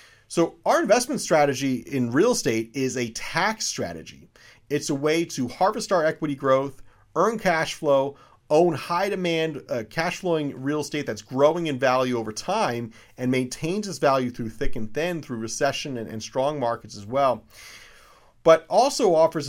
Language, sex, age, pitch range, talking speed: English, male, 30-49, 120-160 Hz, 170 wpm